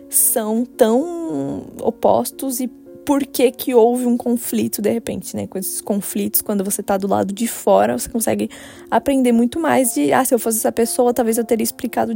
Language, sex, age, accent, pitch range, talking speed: Portuguese, female, 10-29, Brazilian, 220-260 Hz, 190 wpm